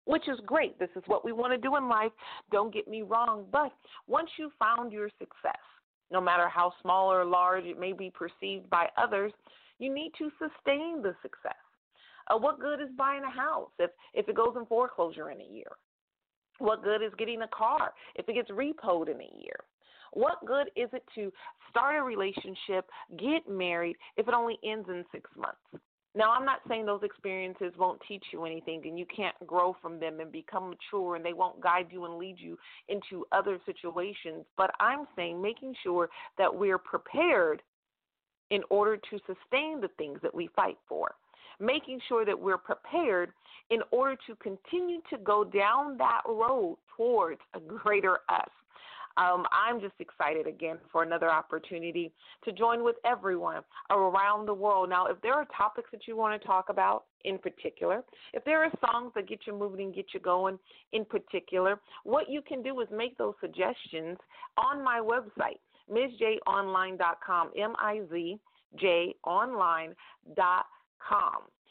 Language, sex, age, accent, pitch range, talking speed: English, female, 40-59, American, 185-270 Hz, 175 wpm